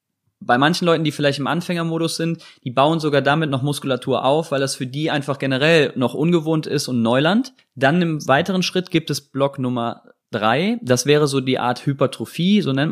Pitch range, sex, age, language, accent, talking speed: 125-155 Hz, male, 20-39, German, German, 200 wpm